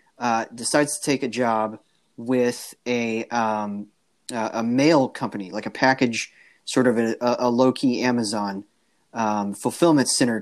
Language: English